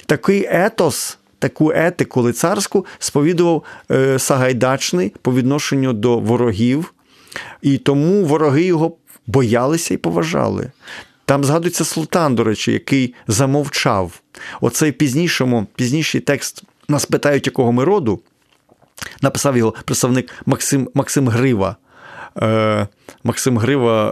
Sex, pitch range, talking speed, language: male, 115-150 Hz, 100 wpm, Ukrainian